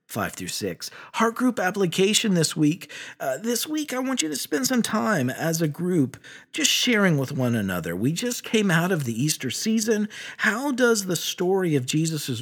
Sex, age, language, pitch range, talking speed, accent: male, 50-69, English, 135-220 Hz, 185 wpm, American